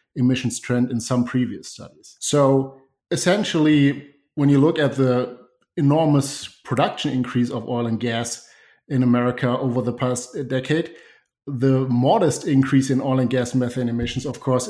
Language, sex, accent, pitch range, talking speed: English, male, German, 120-135 Hz, 150 wpm